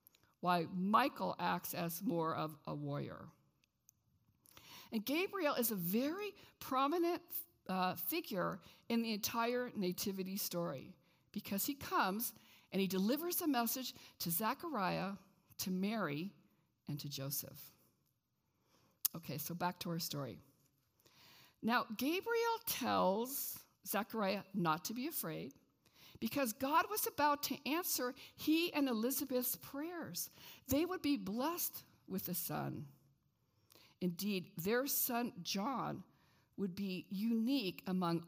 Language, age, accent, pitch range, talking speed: English, 60-79, American, 165-260 Hz, 120 wpm